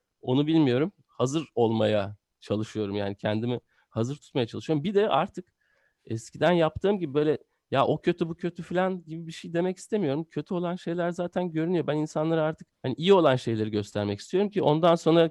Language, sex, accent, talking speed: Turkish, male, native, 175 wpm